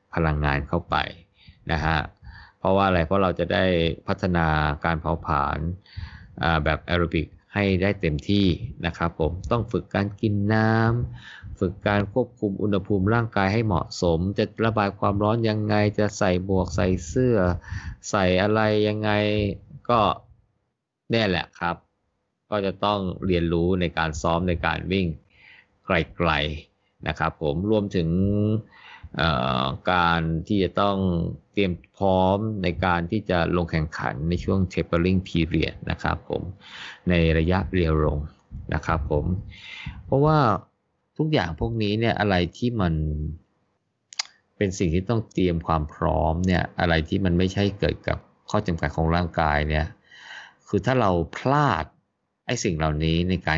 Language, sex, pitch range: Thai, male, 85-105 Hz